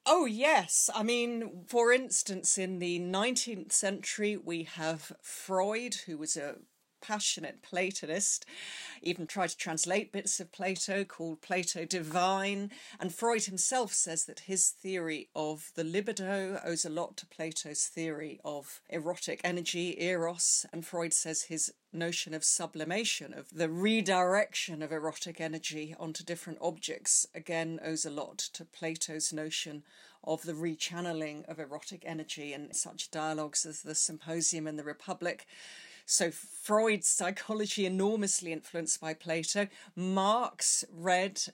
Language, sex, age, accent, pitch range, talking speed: English, female, 40-59, British, 160-195 Hz, 135 wpm